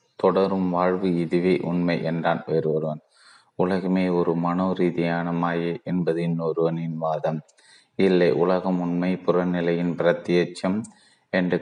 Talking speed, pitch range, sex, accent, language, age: 105 wpm, 85-90 Hz, male, native, Tamil, 30-49